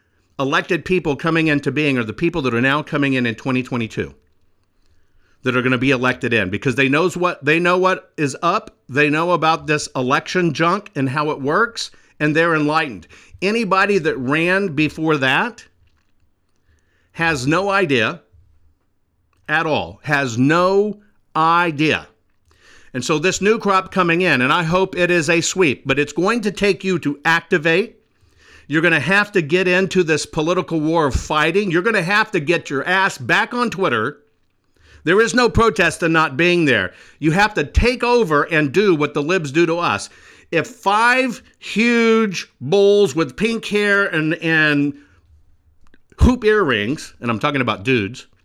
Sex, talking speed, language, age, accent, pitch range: male, 170 wpm, English, 50-69, American, 130-185 Hz